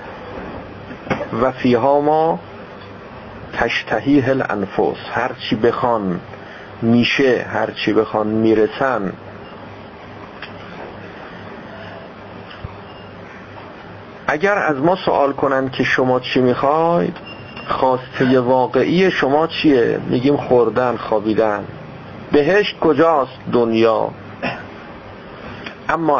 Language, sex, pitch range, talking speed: Persian, male, 110-145 Hz, 70 wpm